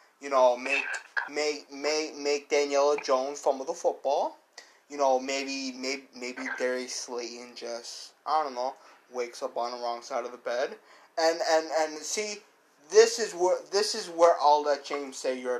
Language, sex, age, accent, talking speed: English, male, 20-39, American, 180 wpm